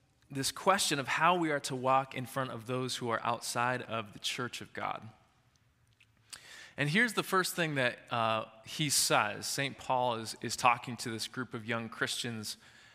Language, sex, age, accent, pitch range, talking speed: English, male, 20-39, American, 120-165 Hz, 185 wpm